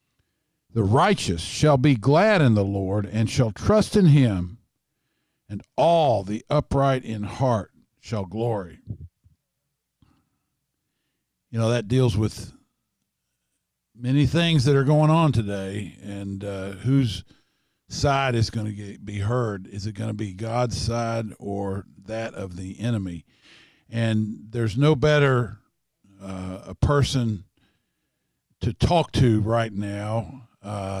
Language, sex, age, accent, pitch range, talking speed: English, male, 50-69, American, 100-130 Hz, 130 wpm